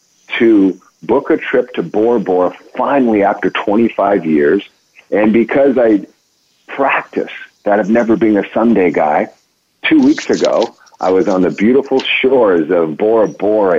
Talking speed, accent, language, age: 150 wpm, American, English, 50-69